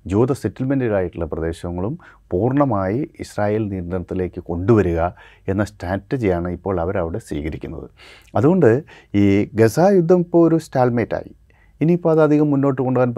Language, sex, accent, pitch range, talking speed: Malayalam, male, native, 95-120 Hz, 100 wpm